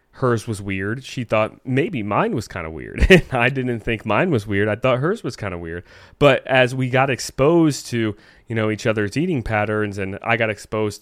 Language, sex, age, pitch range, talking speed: English, male, 20-39, 100-120 Hz, 220 wpm